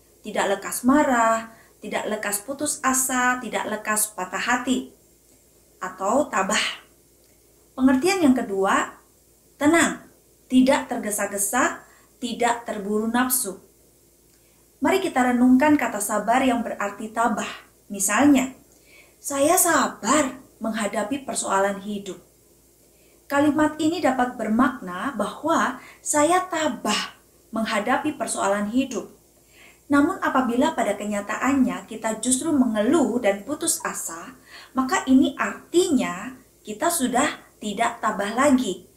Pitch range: 210-275 Hz